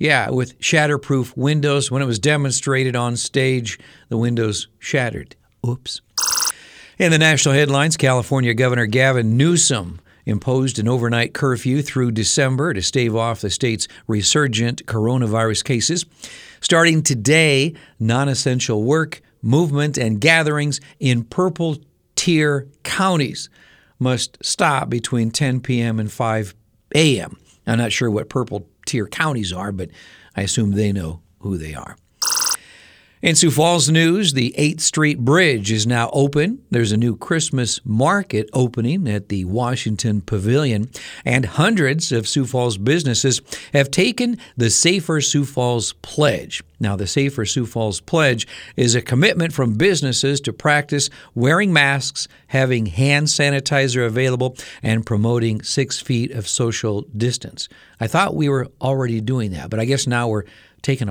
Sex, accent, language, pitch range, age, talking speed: male, American, English, 115-145 Hz, 50-69, 140 wpm